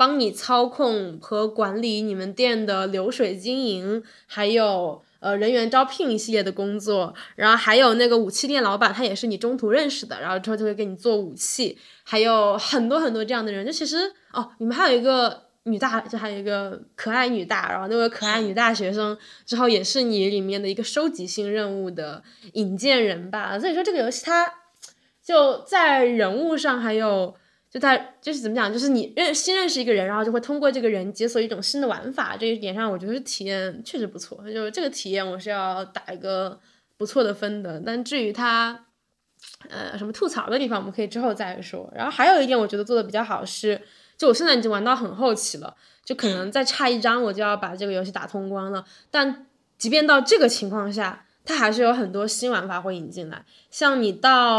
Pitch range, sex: 205-255 Hz, female